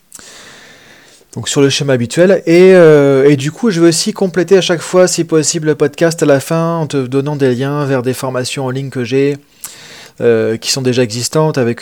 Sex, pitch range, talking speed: male, 125-160 Hz, 205 wpm